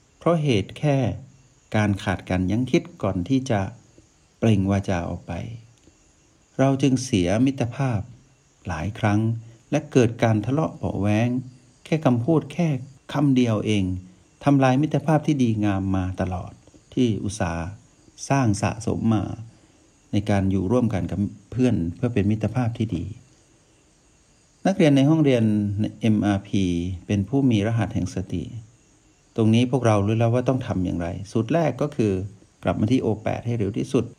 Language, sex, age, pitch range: Thai, male, 60-79, 100-130 Hz